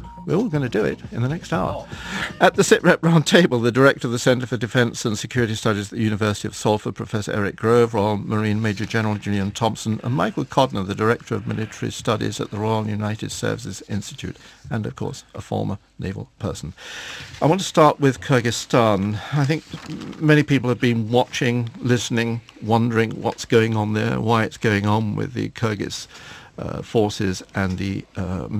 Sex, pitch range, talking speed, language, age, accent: male, 105-130 Hz, 190 wpm, English, 50-69, British